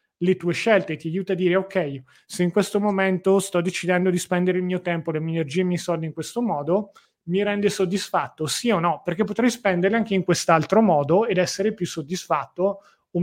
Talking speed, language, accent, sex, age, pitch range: 215 wpm, Italian, native, male, 30-49, 155-190 Hz